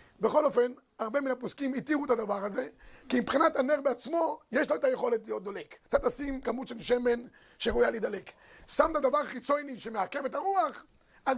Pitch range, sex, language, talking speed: 240-290 Hz, male, Hebrew, 190 wpm